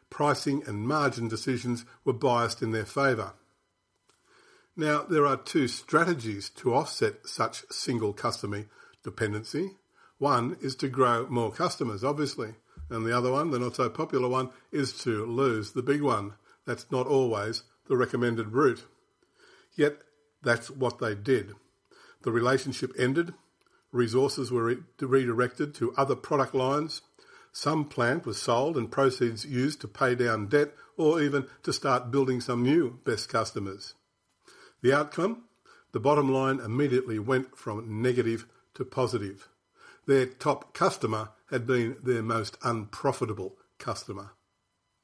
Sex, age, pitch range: male, 50-69, 115-145 Hz